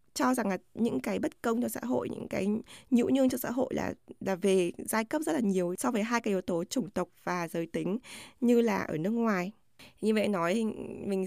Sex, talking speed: female, 240 wpm